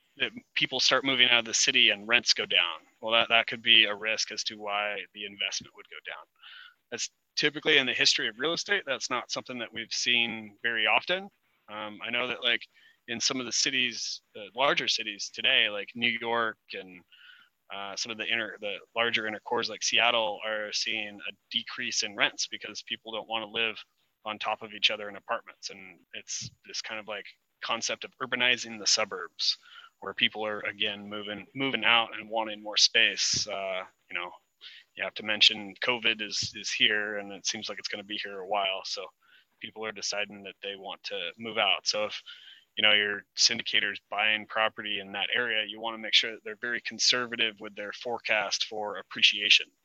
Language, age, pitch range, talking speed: English, 20-39, 105-120 Hz, 200 wpm